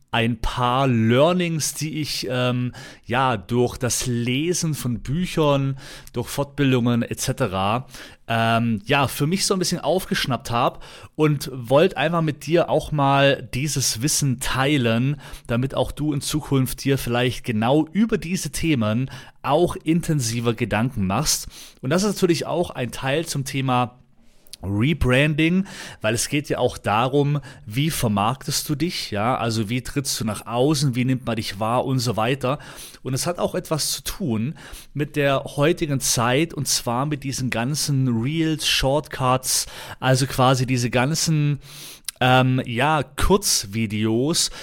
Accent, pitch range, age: German, 120-150 Hz, 30-49